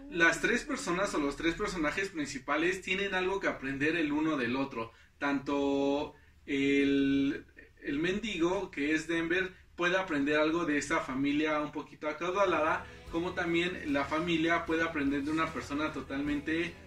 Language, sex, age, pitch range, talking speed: Spanish, male, 30-49, 140-185 Hz, 150 wpm